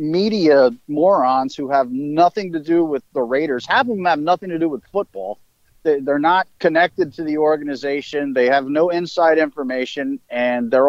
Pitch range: 140-200 Hz